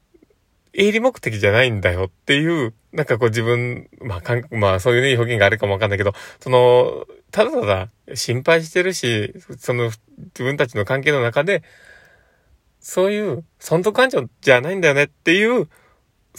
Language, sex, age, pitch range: Japanese, male, 20-39, 100-130 Hz